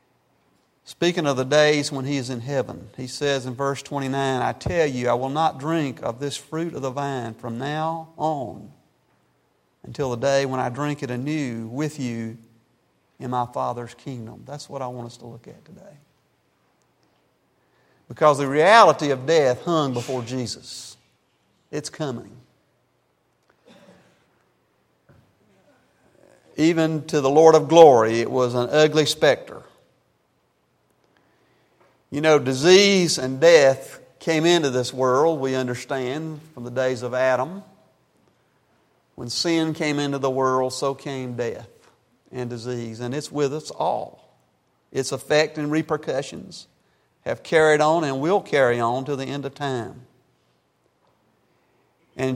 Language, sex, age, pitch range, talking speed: English, male, 50-69, 125-155 Hz, 140 wpm